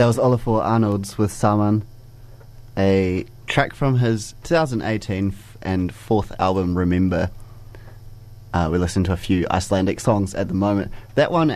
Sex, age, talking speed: male, 20-39, 150 wpm